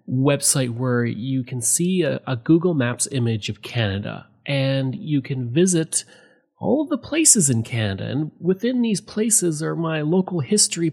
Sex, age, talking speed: male, 30-49, 165 wpm